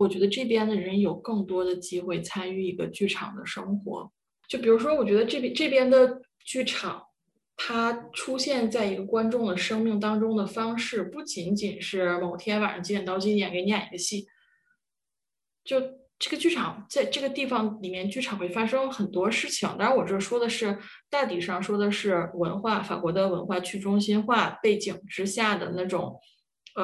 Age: 20-39